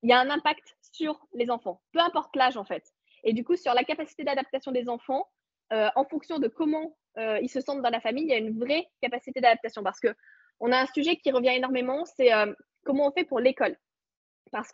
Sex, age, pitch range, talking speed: female, 20-39, 250-305 Hz, 235 wpm